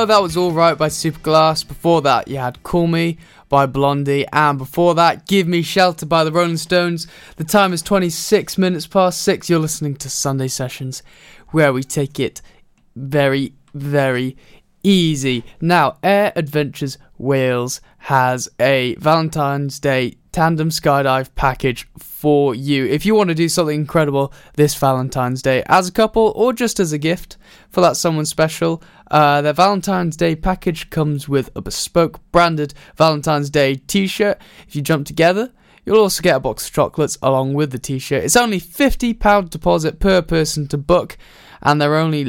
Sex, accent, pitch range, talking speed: male, British, 135-175 Hz, 165 wpm